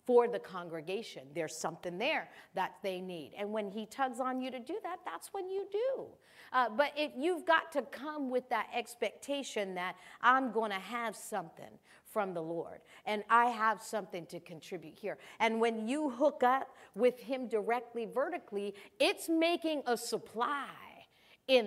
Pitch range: 205-290 Hz